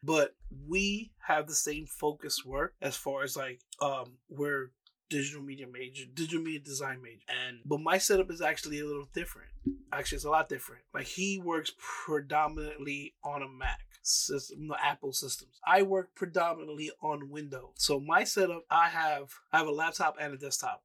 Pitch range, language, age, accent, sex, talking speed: 140-170 Hz, English, 20-39, American, male, 175 wpm